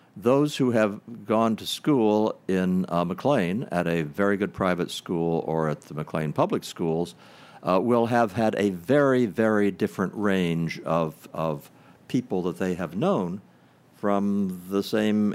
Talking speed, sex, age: 155 wpm, male, 60-79